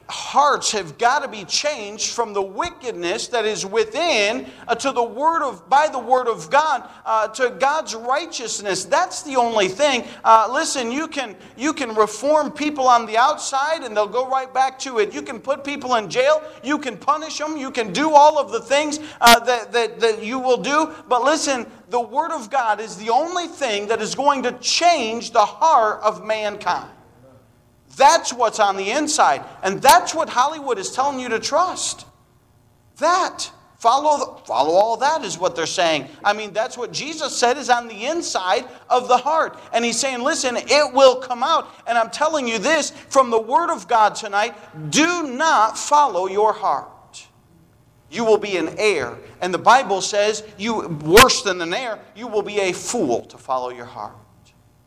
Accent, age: American, 40-59